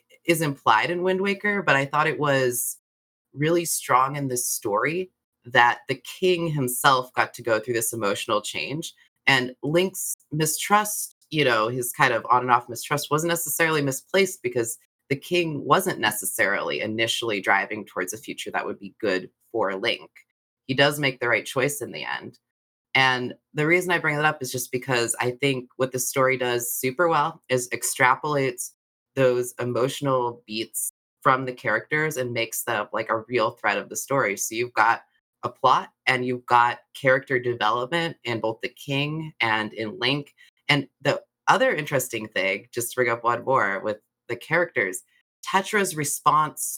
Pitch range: 120-155 Hz